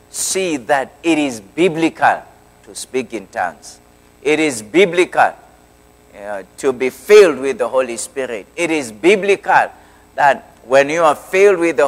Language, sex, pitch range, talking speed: English, male, 105-150 Hz, 150 wpm